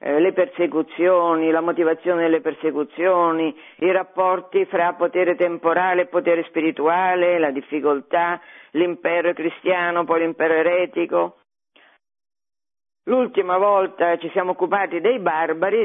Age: 50-69